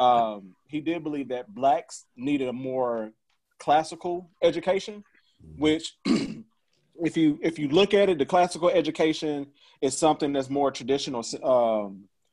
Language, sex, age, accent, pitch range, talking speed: English, male, 30-49, American, 120-160 Hz, 135 wpm